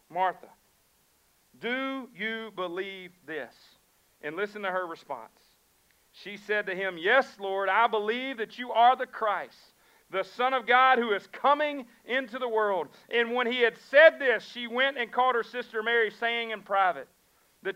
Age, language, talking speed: 50-69, English, 170 wpm